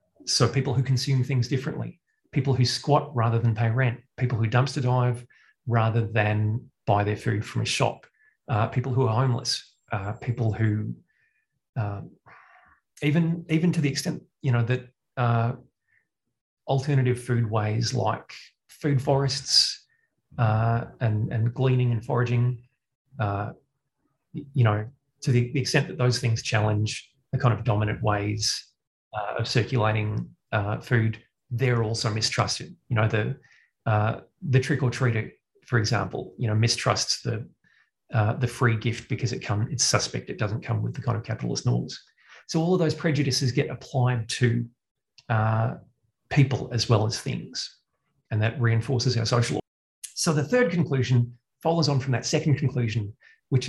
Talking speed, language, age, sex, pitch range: 155 wpm, English, 30-49, male, 115-135 Hz